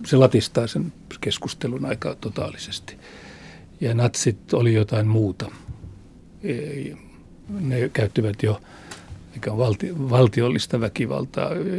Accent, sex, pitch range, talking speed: native, male, 115-145 Hz, 80 wpm